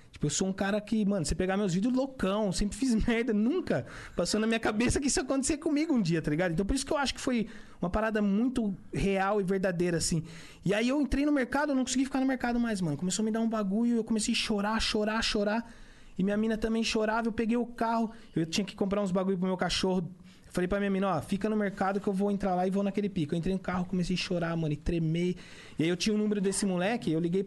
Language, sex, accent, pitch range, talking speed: Portuguese, male, Brazilian, 180-220 Hz, 270 wpm